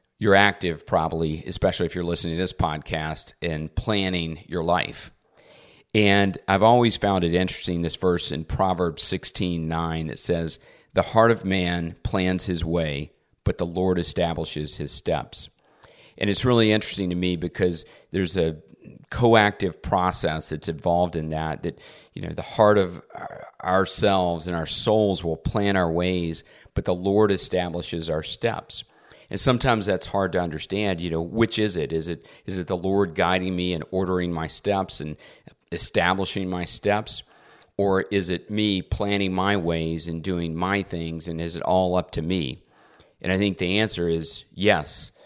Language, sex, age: English, male, 40-59